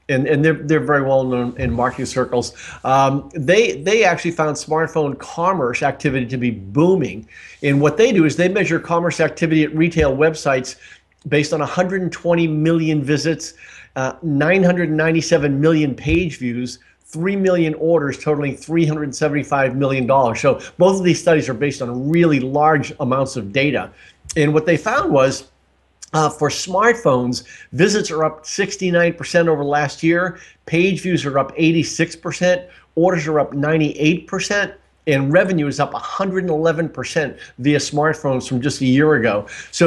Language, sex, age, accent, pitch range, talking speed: English, male, 50-69, American, 140-170 Hz, 145 wpm